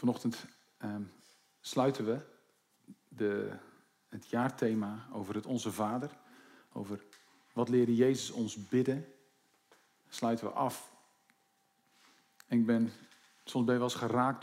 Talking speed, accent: 110 wpm, Dutch